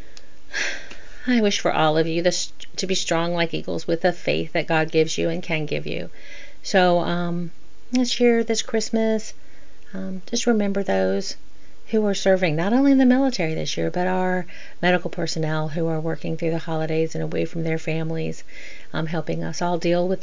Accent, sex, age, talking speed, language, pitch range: American, female, 40-59, 185 wpm, English, 165-210 Hz